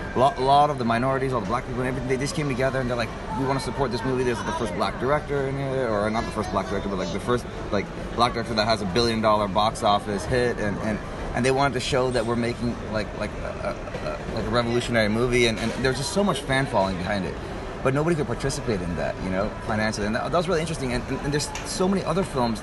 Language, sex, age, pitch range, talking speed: English, male, 30-49, 110-135 Hz, 275 wpm